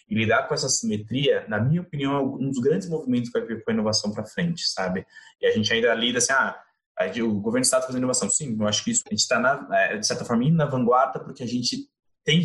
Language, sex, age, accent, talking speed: Portuguese, male, 20-39, Brazilian, 255 wpm